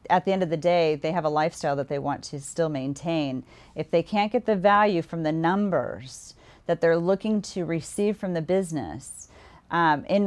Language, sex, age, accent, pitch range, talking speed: English, female, 40-59, American, 150-185 Hz, 205 wpm